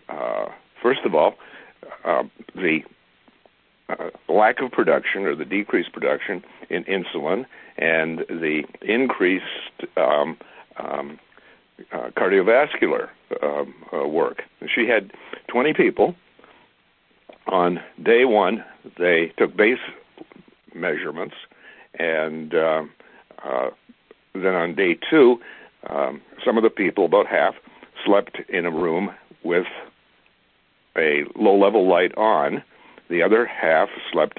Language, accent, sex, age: English, American, male, 60-79